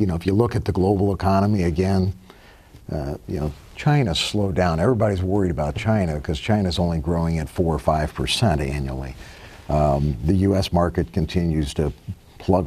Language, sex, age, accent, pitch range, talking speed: English, male, 50-69, American, 85-105 Hz, 175 wpm